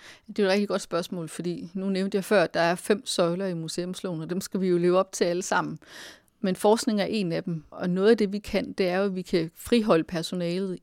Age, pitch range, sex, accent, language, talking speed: 30-49, 180-205 Hz, female, native, Danish, 265 wpm